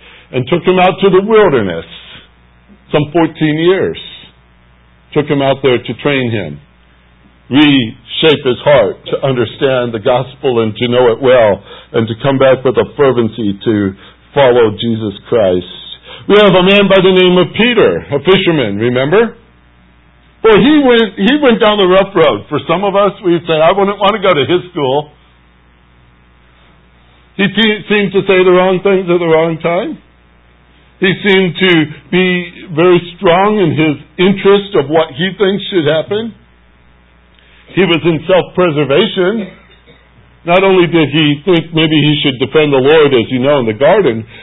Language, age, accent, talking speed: English, 60-79, American, 165 wpm